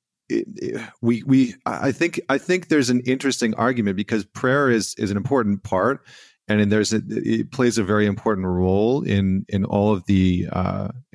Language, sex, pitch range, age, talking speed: English, male, 95-115 Hz, 40-59, 170 wpm